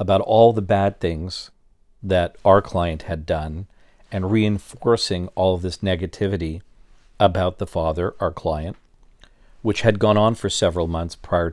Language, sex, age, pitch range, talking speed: English, male, 50-69, 85-105 Hz, 150 wpm